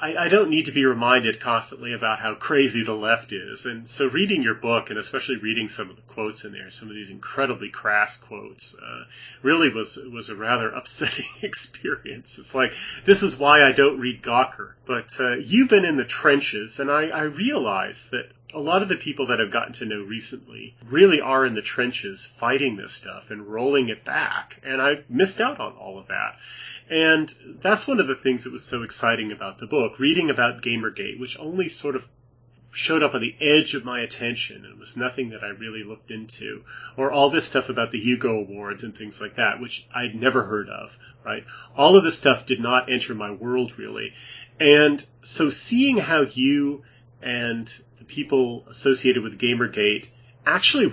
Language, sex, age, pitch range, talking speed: English, male, 30-49, 115-140 Hz, 200 wpm